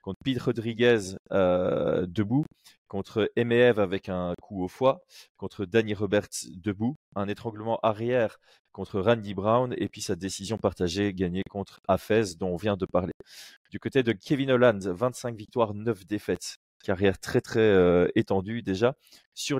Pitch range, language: 95-115 Hz, French